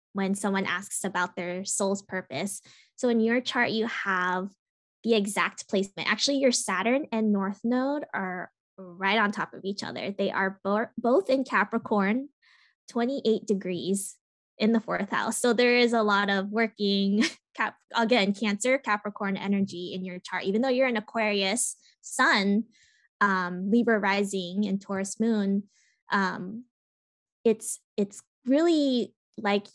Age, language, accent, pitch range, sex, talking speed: 20-39, English, American, 195-230 Hz, female, 145 wpm